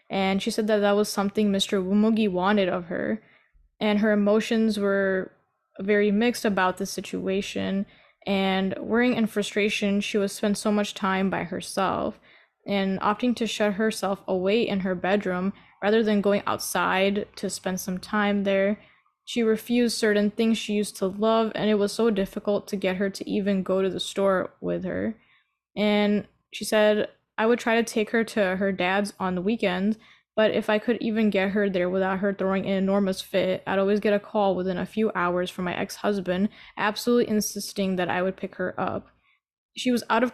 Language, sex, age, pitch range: English, female, 10-29, 195-220 Hz